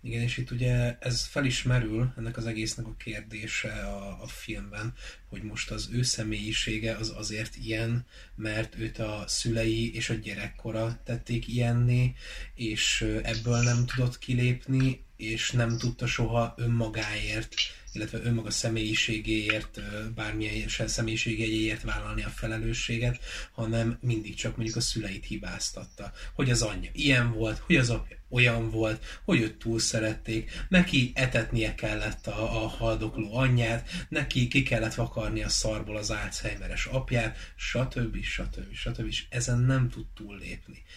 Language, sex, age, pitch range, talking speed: Hungarian, male, 20-39, 110-120 Hz, 140 wpm